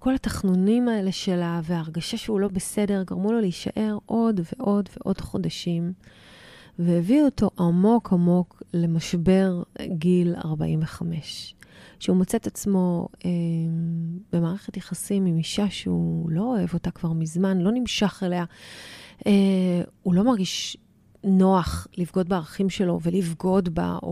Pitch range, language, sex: 175-205 Hz, Hebrew, female